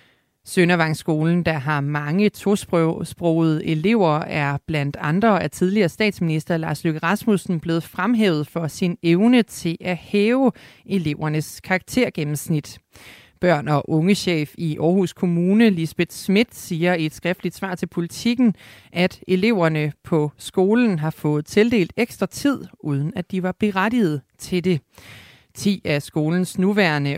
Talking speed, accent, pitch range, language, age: 130 wpm, native, 150-195 Hz, Danish, 30-49